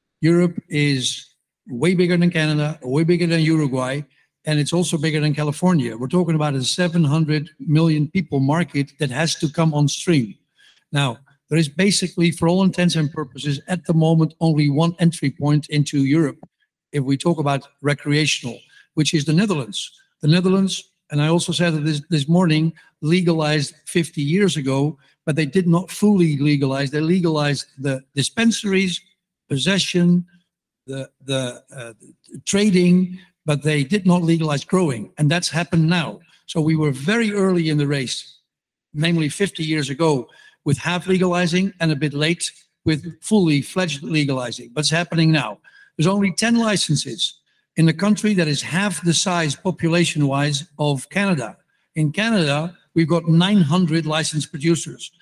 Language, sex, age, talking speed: English, male, 60-79, 160 wpm